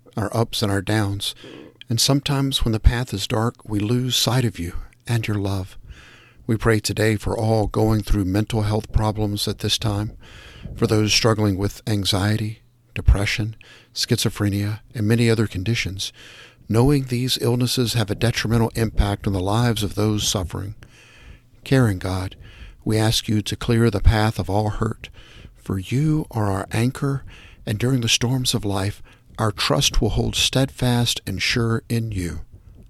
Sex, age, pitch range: male, 60-79, 100-120 Hz